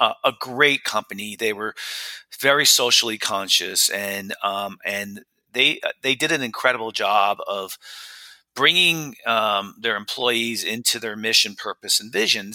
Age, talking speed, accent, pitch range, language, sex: 40-59, 145 wpm, American, 110-140 Hz, English, male